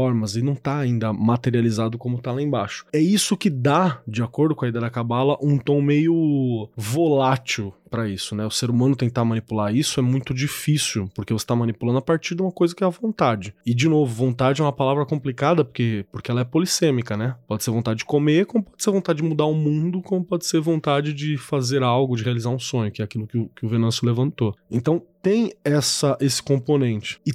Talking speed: 220 wpm